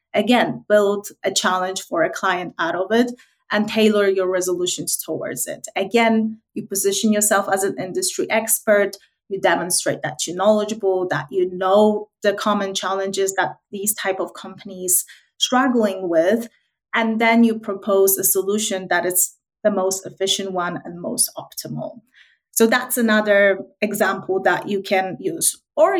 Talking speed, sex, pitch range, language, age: 150 wpm, female, 190-220 Hz, English, 30-49